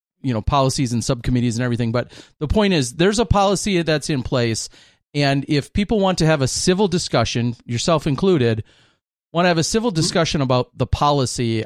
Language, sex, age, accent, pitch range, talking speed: English, male, 40-59, American, 120-150 Hz, 190 wpm